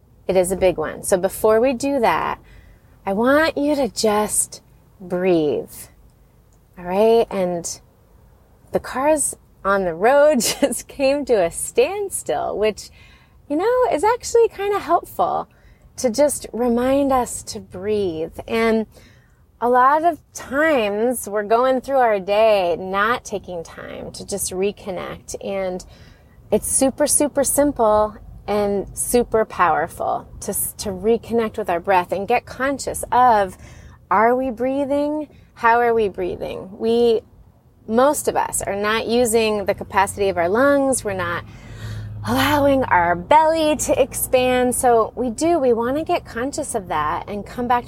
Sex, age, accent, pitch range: female, 30-49, American, 195-275 Hz